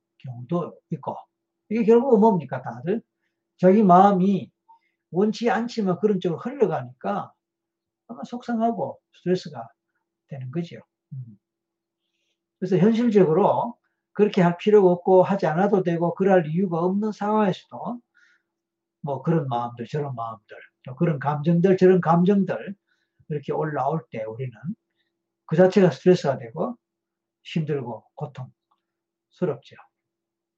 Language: Korean